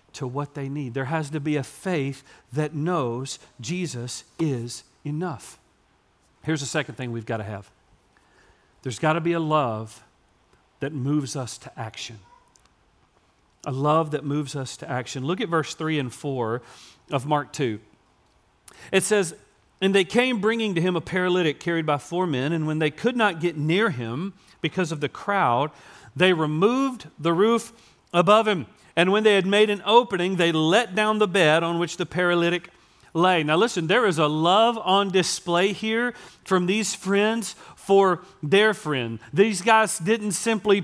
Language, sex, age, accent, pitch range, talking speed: English, male, 40-59, American, 150-200 Hz, 175 wpm